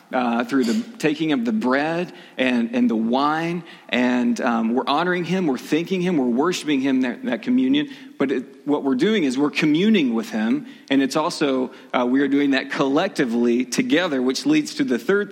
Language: English